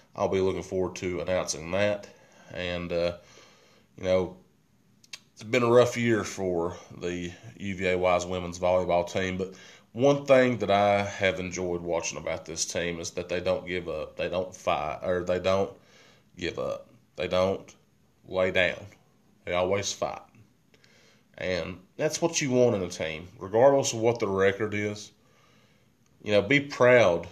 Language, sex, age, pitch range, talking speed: English, male, 30-49, 85-100 Hz, 160 wpm